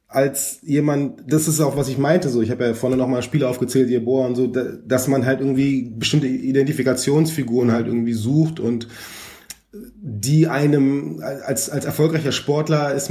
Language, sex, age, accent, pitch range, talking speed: German, male, 20-39, German, 110-135 Hz, 170 wpm